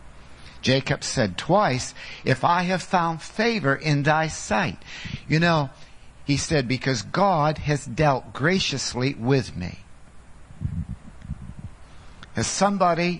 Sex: male